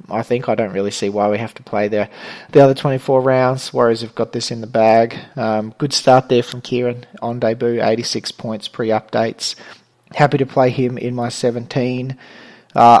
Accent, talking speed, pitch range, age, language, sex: Australian, 195 wpm, 110-130 Hz, 30-49, English, male